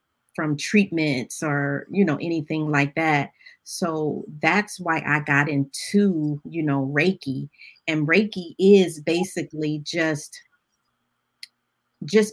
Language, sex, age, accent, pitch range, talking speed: English, female, 40-59, American, 150-195 Hz, 110 wpm